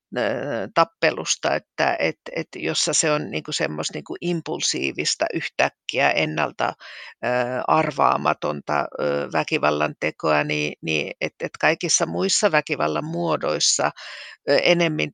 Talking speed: 90 wpm